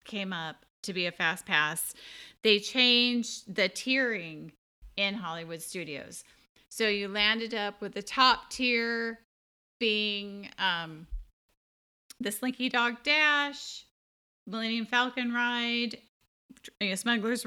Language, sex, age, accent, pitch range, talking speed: English, female, 30-49, American, 175-230 Hz, 110 wpm